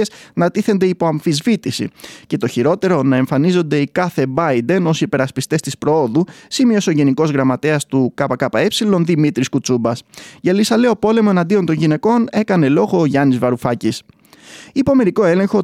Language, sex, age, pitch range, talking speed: Greek, male, 20-39, 135-195 Hz, 145 wpm